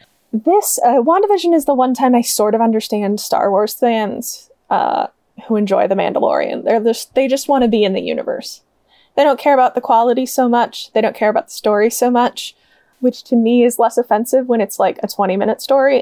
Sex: female